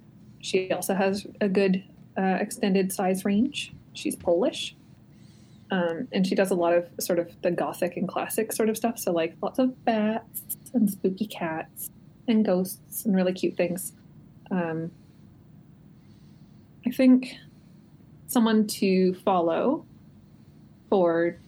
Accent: American